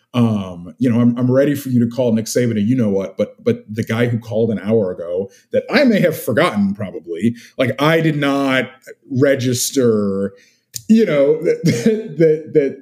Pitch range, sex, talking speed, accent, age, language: 105-130 Hz, male, 190 wpm, American, 30-49, English